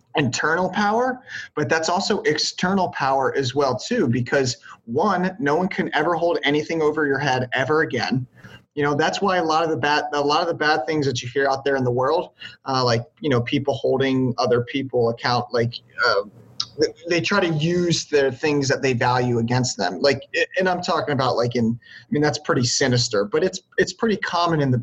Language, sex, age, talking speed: English, male, 30-49, 210 wpm